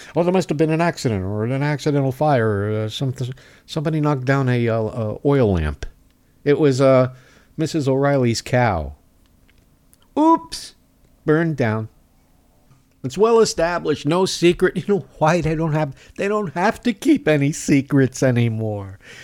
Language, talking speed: English, 155 wpm